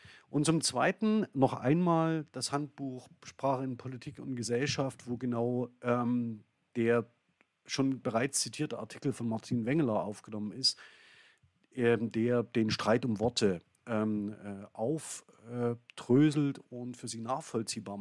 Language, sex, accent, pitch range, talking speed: German, male, German, 120-150 Hz, 125 wpm